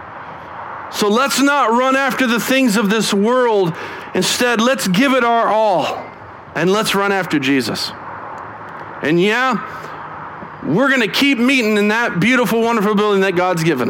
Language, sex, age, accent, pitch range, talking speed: English, male, 40-59, American, 170-220 Hz, 155 wpm